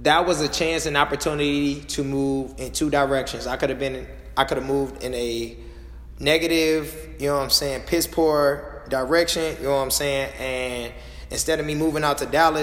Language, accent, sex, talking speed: English, American, male, 205 wpm